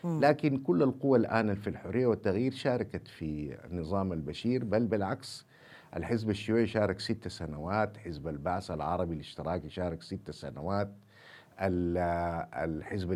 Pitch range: 95-130 Hz